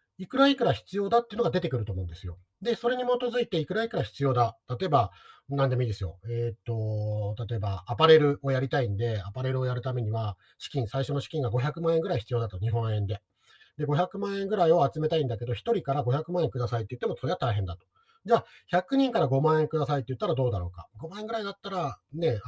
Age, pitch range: 40-59, 115-180 Hz